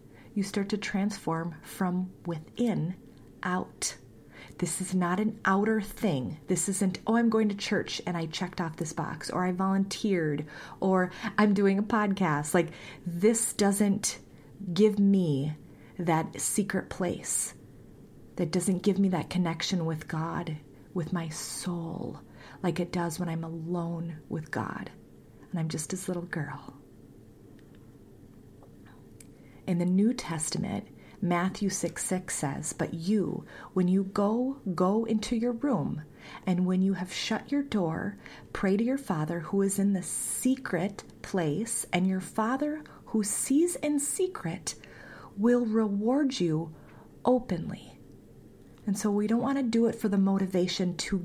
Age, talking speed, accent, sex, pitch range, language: 30-49, 145 wpm, American, female, 170-215 Hz, English